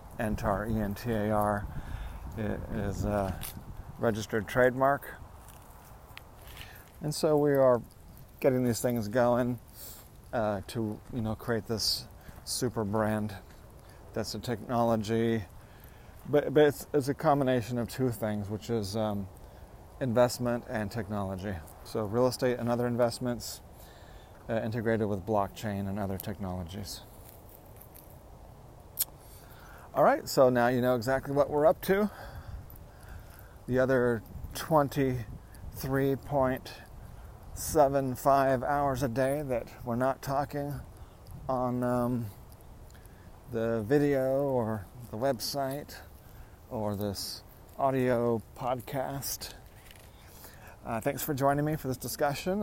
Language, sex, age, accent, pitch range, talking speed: English, male, 40-59, American, 105-130 Hz, 105 wpm